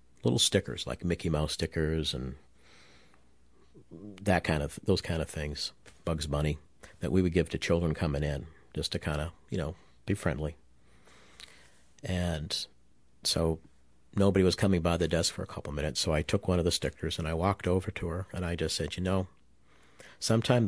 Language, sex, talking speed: English, male, 190 wpm